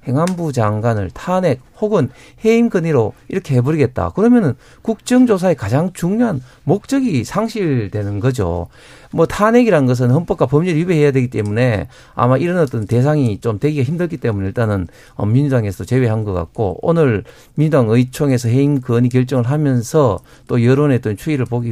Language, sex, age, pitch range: Korean, male, 50-69, 115-160 Hz